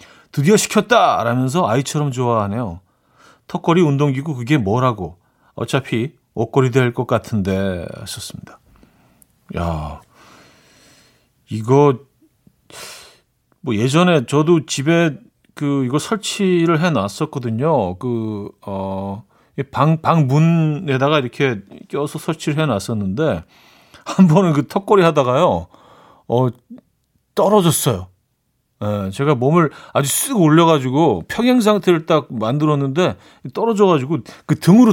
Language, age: Korean, 40-59